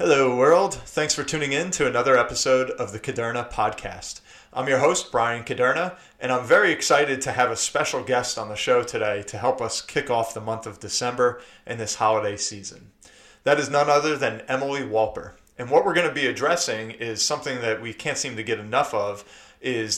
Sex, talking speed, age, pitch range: male, 205 wpm, 30-49, 110-135 Hz